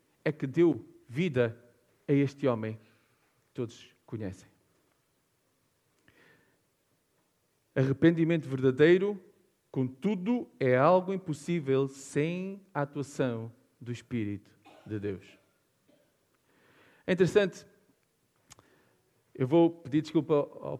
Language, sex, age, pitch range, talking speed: Portuguese, male, 40-59, 135-200 Hz, 85 wpm